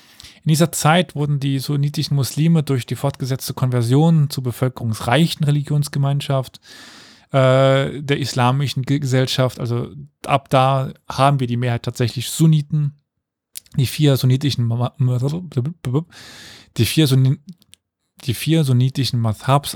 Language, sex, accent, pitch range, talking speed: German, male, German, 125-145 Hz, 100 wpm